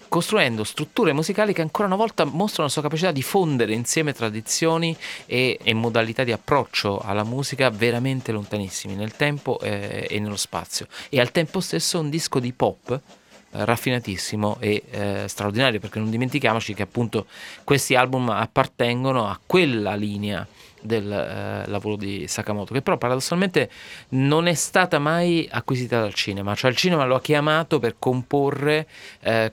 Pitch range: 105-140 Hz